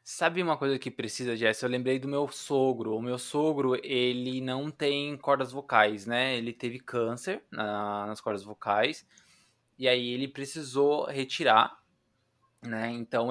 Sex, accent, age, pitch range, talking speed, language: male, Brazilian, 20-39, 120-165 Hz, 150 wpm, Portuguese